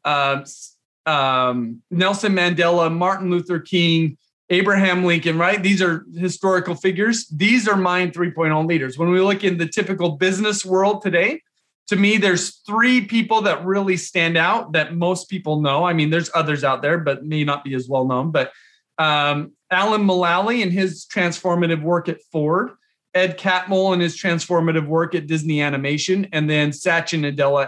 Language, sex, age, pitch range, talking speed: English, male, 40-59, 150-190 Hz, 165 wpm